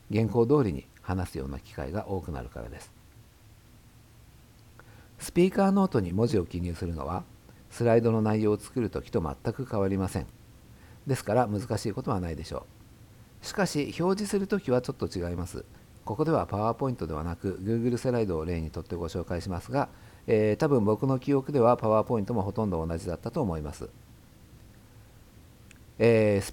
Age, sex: 50-69, male